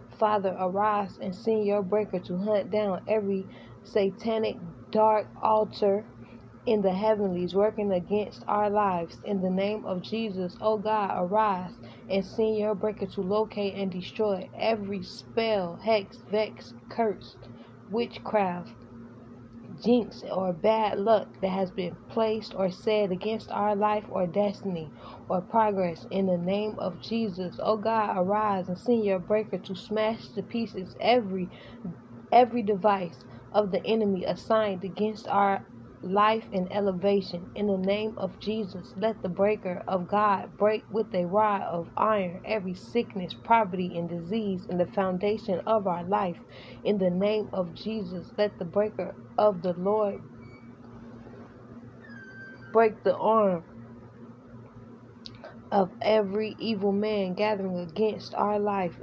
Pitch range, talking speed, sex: 180-215 Hz, 140 wpm, female